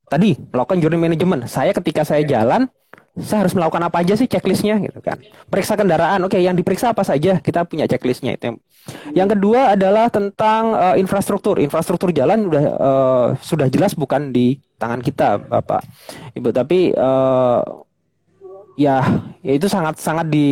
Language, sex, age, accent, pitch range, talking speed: Indonesian, male, 20-39, native, 155-215 Hz, 160 wpm